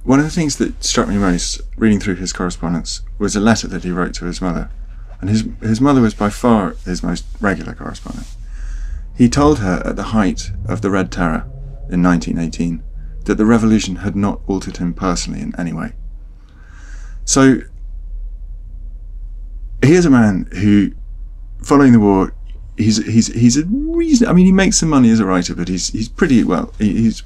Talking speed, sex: 185 wpm, male